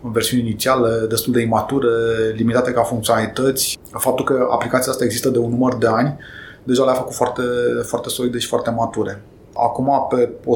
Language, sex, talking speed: English, male, 175 wpm